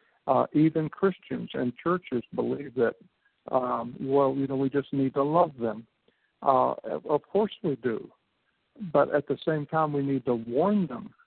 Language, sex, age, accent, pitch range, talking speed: English, male, 60-79, American, 130-170 Hz, 170 wpm